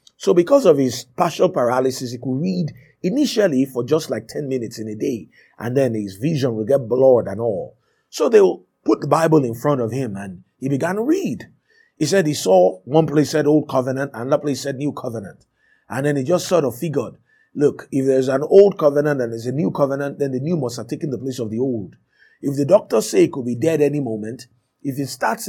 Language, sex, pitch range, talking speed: English, male, 125-150 Hz, 235 wpm